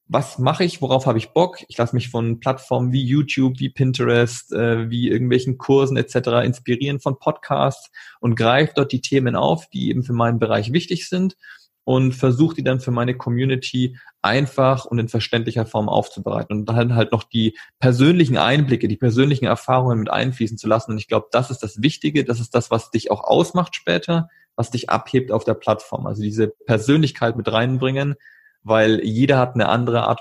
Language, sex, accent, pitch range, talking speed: German, male, German, 115-135 Hz, 190 wpm